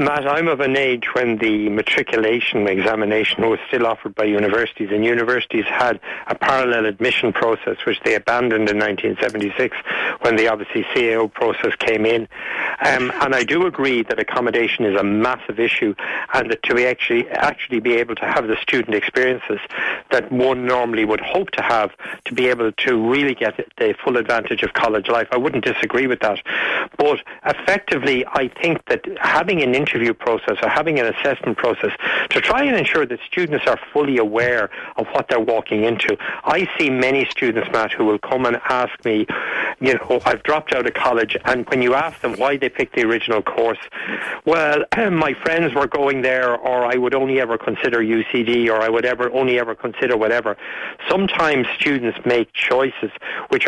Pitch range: 110-130 Hz